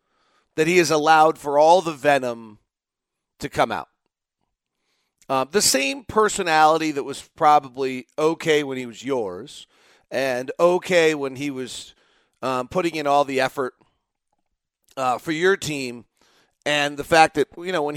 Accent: American